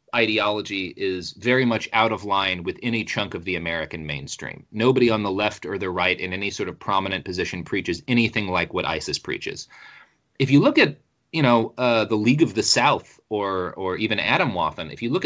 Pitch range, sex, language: 95-125 Hz, male, English